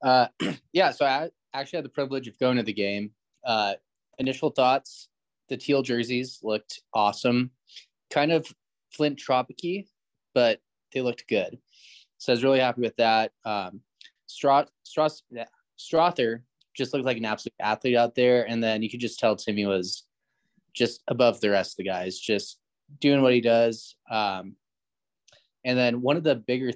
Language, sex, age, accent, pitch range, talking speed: English, male, 20-39, American, 105-130 Hz, 170 wpm